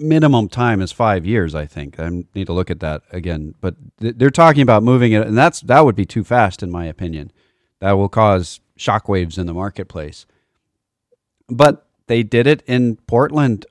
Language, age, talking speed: English, 40-59, 195 wpm